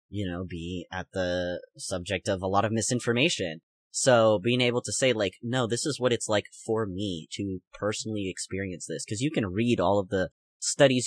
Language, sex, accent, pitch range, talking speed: English, male, American, 95-115 Hz, 200 wpm